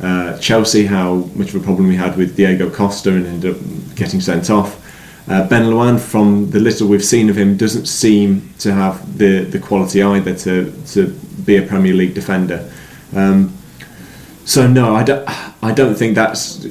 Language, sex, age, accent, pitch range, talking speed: English, male, 20-39, British, 95-110 Hz, 185 wpm